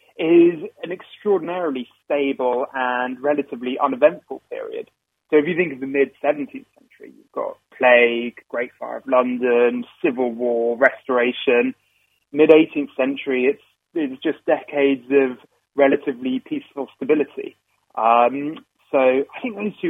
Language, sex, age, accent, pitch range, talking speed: English, male, 30-49, British, 120-180 Hz, 125 wpm